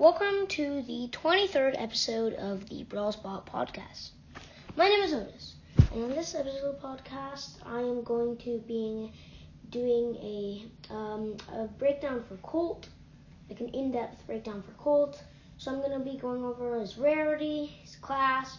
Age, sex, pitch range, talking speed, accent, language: 20-39, female, 225-275 Hz, 160 wpm, American, English